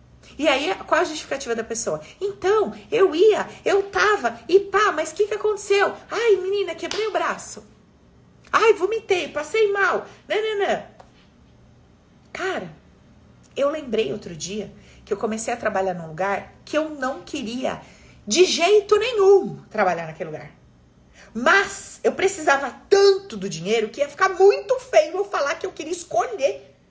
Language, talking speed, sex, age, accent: Portuguese, 150 wpm, female, 40-59, Brazilian